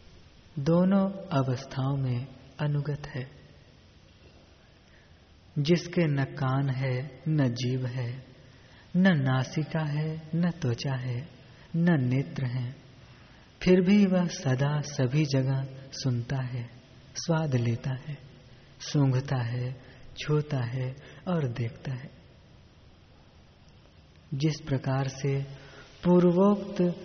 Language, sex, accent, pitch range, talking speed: Hindi, female, native, 130-160 Hz, 100 wpm